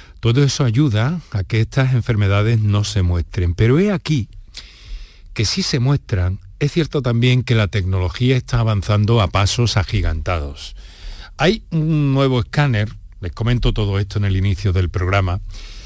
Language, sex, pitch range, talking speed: Spanish, male, 95-130 Hz, 155 wpm